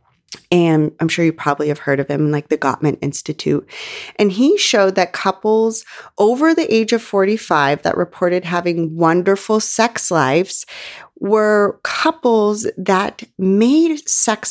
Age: 30-49